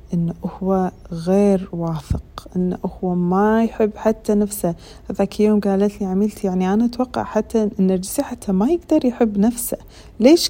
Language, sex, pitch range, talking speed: Arabic, female, 190-255 Hz, 150 wpm